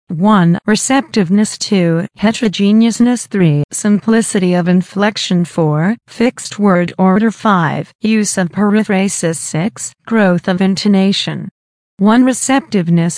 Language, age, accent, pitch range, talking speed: English, 40-59, American, 180-220 Hz, 100 wpm